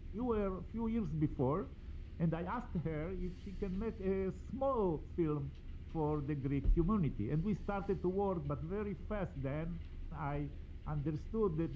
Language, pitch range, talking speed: English, 135-185 Hz, 170 wpm